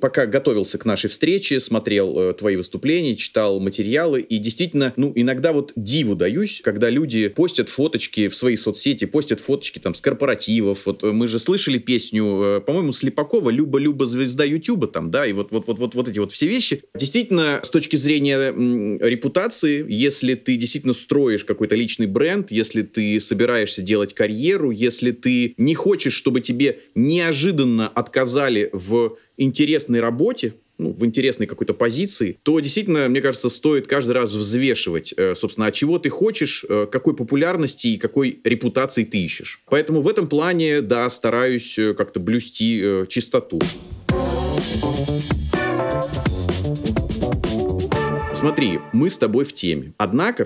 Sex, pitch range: male, 110-150 Hz